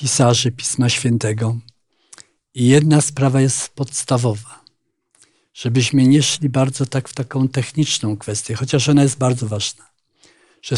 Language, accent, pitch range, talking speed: Polish, native, 115-150 Hz, 130 wpm